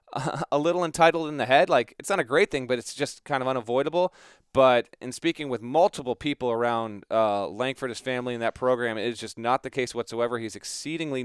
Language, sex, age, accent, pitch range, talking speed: English, male, 30-49, American, 115-145 Hz, 220 wpm